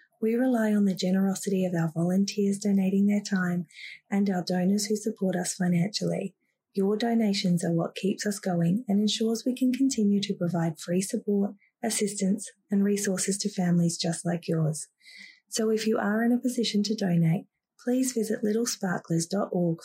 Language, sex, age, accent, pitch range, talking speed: English, female, 20-39, Australian, 170-220 Hz, 165 wpm